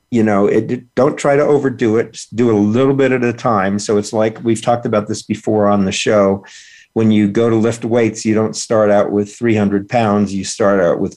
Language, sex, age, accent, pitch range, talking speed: English, male, 50-69, American, 105-120 Hz, 225 wpm